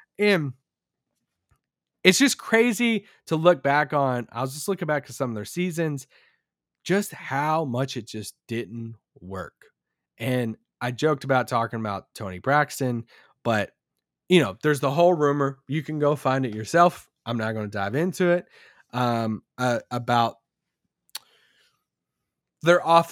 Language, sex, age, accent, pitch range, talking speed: English, male, 20-39, American, 125-170 Hz, 150 wpm